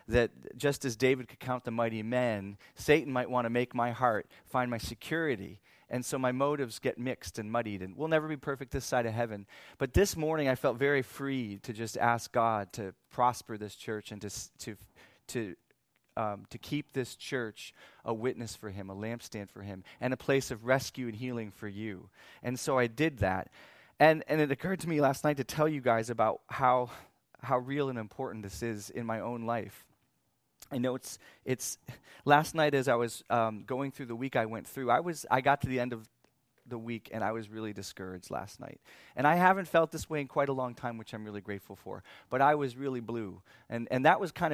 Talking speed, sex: 225 wpm, male